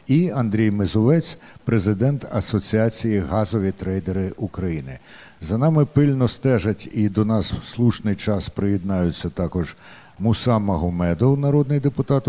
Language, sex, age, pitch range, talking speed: Ukrainian, male, 60-79, 95-120 Hz, 115 wpm